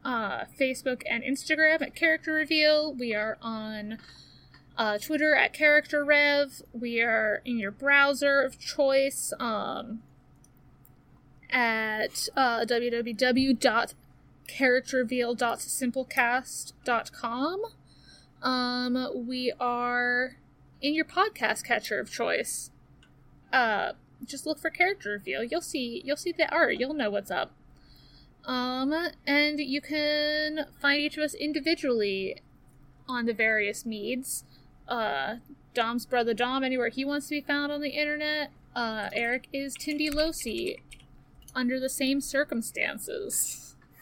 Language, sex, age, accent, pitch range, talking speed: English, female, 10-29, American, 230-290 Hz, 115 wpm